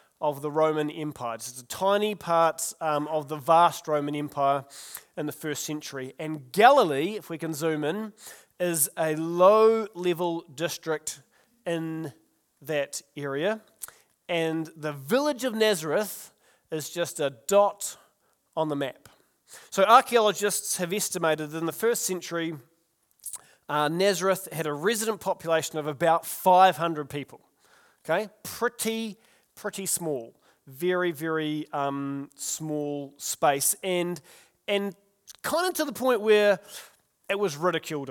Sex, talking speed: male, 130 wpm